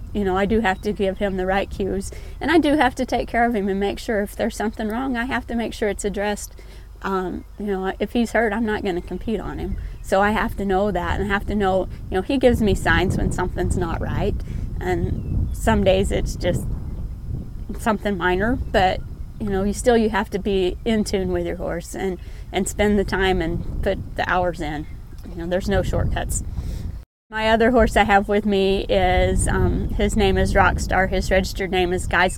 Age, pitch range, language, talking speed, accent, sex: 30-49, 185-230 Hz, English, 225 wpm, American, female